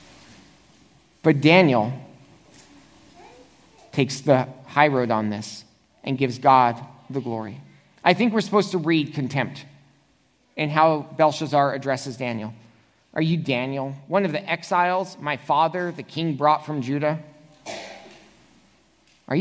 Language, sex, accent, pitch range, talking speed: English, male, American, 135-160 Hz, 125 wpm